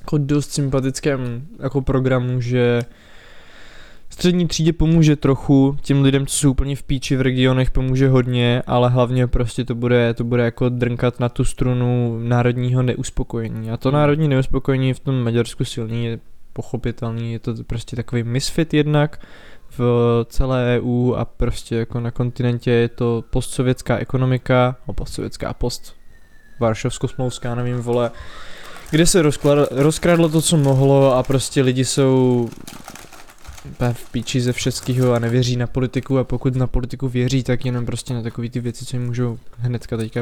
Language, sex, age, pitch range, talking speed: Czech, male, 20-39, 120-135 Hz, 155 wpm